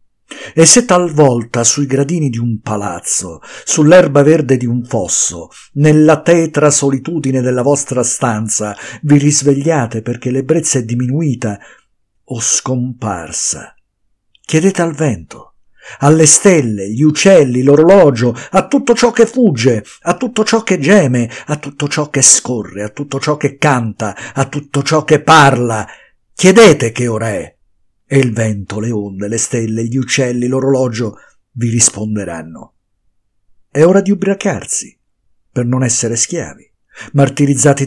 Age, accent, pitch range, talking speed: 50-69, native, 110-155 Hz, 135 wpm